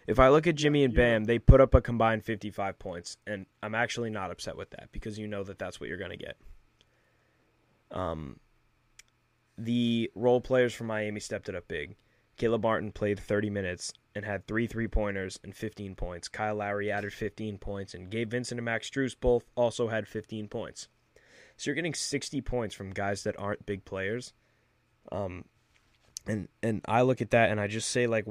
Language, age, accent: English, 10-29, American